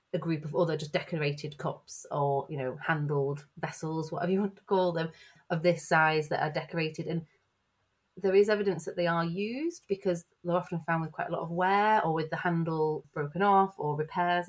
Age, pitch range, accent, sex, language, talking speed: 30-49, 150-185 Hz, British, female, English, 205 wpm